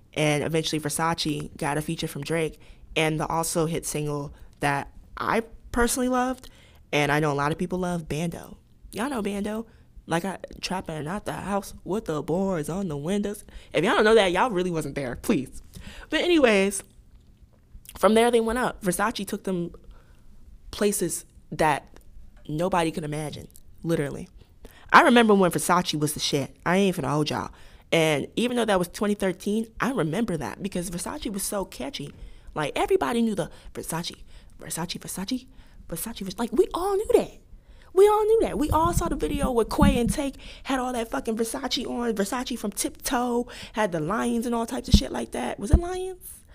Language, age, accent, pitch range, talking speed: English, 20-39, American, 155-230 Hz, 185 wpm